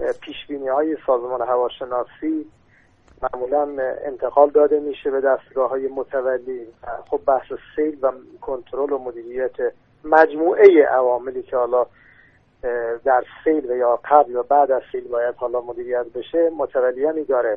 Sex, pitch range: male, 130-170 Hz